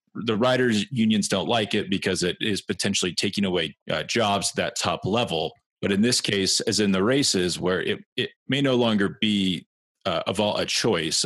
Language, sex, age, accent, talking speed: English, male, 30-49, American, 205 wpm